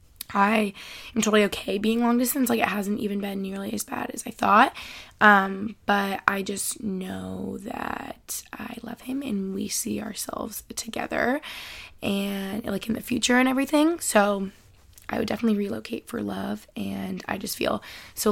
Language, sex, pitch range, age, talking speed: English, female, 200-245 Hz, 20-39, 165 wpm